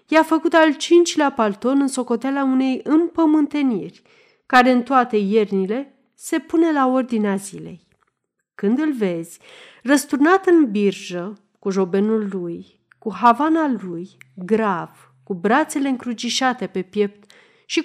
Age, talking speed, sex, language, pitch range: 40-59, 125 wpm, female, Romanian, 200-315 Hz